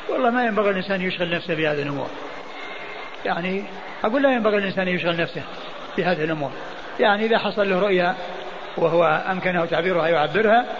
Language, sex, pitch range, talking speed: Arabic, male, 170-200 Hz, 145 wpm